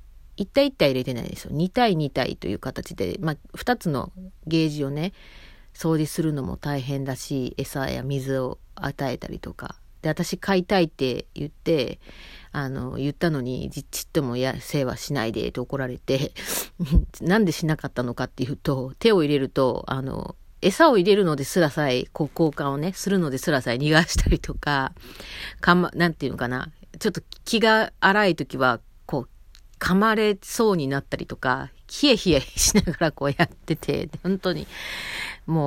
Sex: female